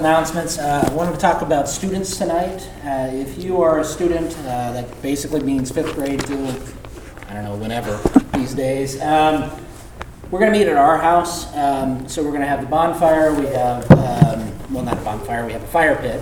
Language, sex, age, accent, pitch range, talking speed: English, male, 30-49, American, 130-165 Hz, 205 wpm